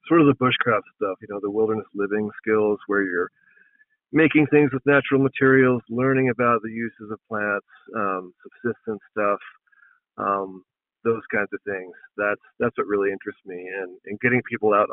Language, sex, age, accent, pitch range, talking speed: English, male, 40-59, American, 105-140 Hz, 175 wpm